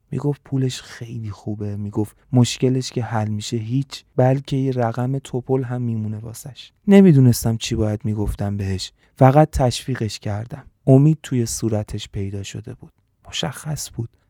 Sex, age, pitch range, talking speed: male, 30-49, 110-135 Hz, 140 wpm